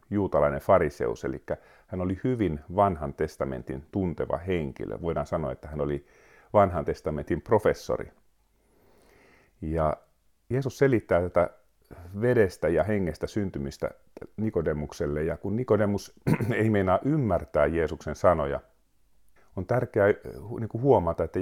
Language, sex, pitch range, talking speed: Finnish, male, 80-110 Hz, 110 wpm